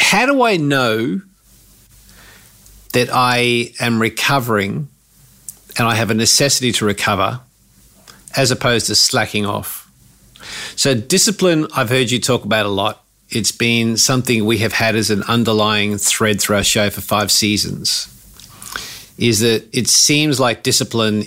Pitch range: 105-130 Hz